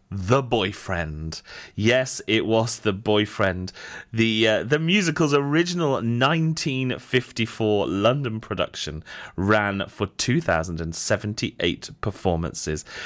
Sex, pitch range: male, 95-130 Hz